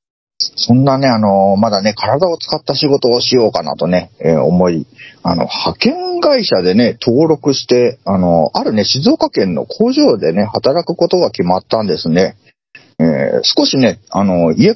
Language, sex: Japanese, male